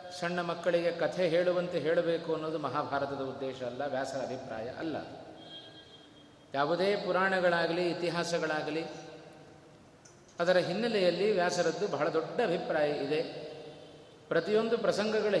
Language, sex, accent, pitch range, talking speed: Kannada, male, native, 150-185 Hz, 95 wpm